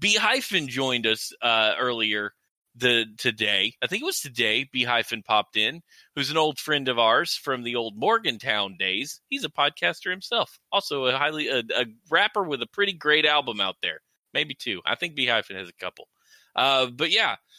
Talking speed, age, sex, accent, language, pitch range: 185 wpm, 20-39, male, American, English, 110-165 Hz